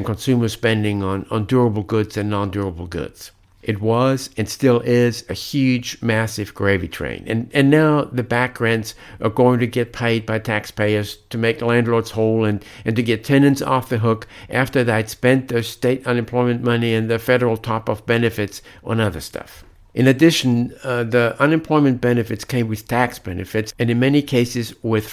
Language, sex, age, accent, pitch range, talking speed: English, male, 60-79, American, 105-125 Hz, 175 wpm